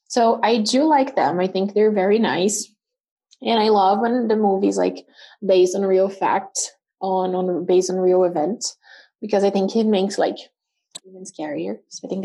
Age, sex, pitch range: 20-39, female, 190-255 Hz